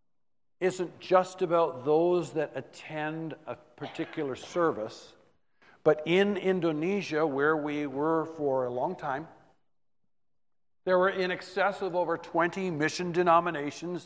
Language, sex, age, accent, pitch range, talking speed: English, male, 60-79, American, 145-185 Hz, 120 wpm